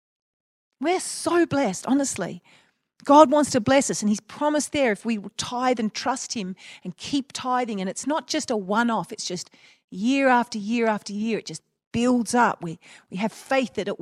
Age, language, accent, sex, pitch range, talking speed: 40-59, English, Australian, female, 200-270 Hz, 195 wpm